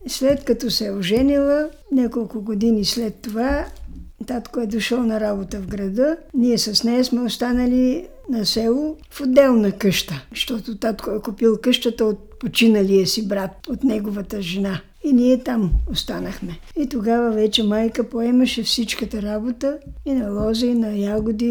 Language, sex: Bulgarian, female